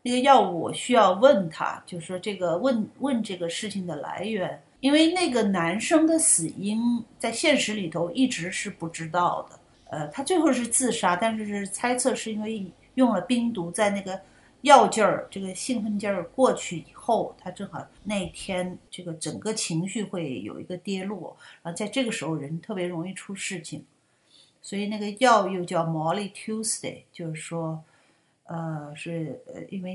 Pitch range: 170-230 Hz